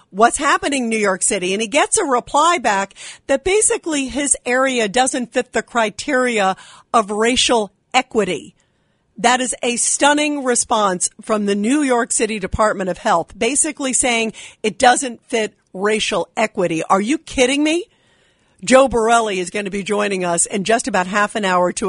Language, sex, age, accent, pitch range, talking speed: English, female, 50-69, American, 205-260 Hz, 165 wpm